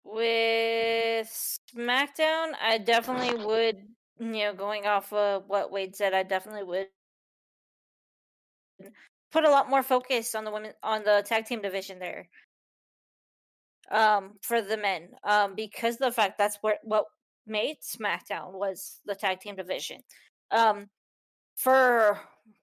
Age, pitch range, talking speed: 20-39, 210-240 Hz, 135 wpm